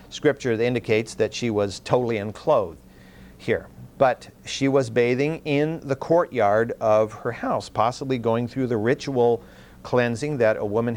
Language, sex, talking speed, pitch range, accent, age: English, male, 155 wpm, 110-155 Hz, American, 50-69